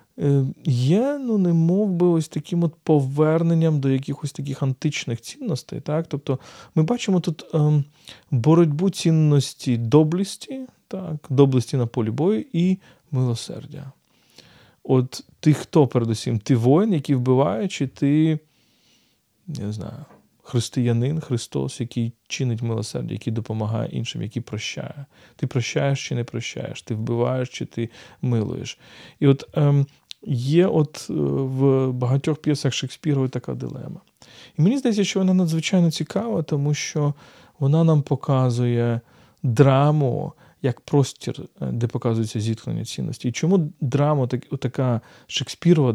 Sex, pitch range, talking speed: male, 120-155 Hz, 125 wpm